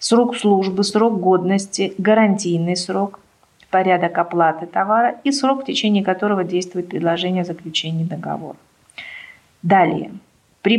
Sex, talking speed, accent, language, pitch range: female, 115 wpm, native, Russian, 180-225 Hz